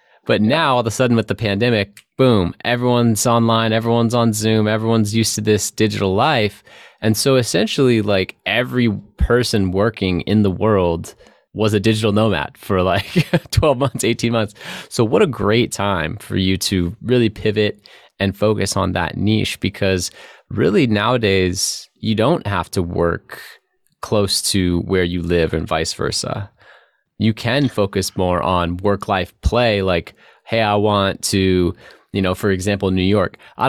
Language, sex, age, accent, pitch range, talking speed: English, male, 20-39, American, 95-115 Hz, 160 wpm